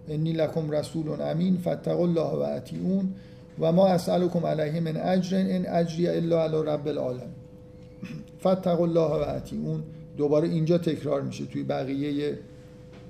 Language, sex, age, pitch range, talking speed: Persian, male, 50-69, 150-175 Hz, 140 wpm